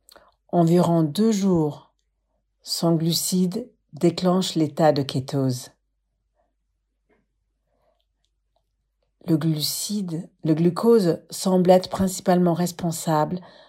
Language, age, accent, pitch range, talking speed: English, 50-69, French, 155-175 Hz, 75 wpm